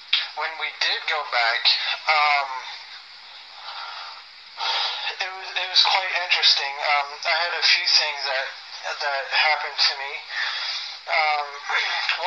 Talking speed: 115 wpm